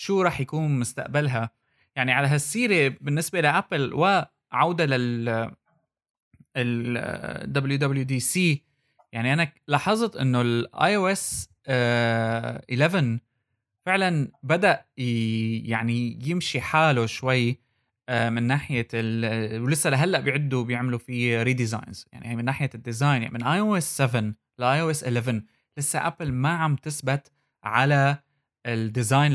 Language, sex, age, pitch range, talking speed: Arabic, male, 20-39, 120-150 Hz, 115 wpm